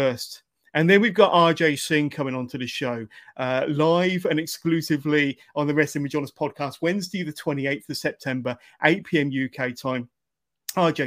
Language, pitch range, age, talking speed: English, 135-155 Hz, 30-49, 165 wpm